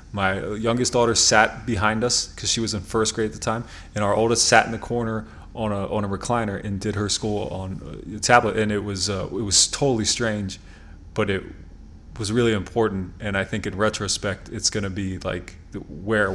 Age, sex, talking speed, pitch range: 30-49, male, 215 wpm, 95-115 Hz